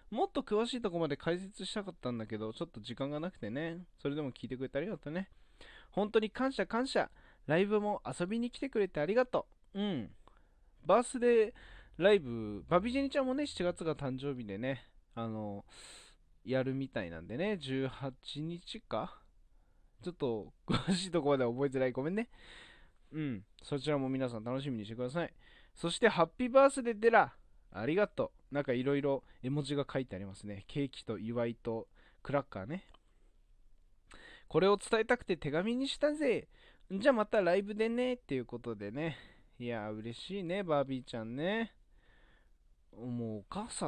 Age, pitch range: 20-39, 120-195 Hz